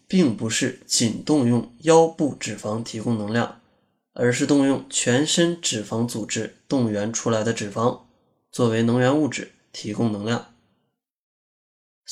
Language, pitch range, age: Chinese, 115-150 Hz, 20-39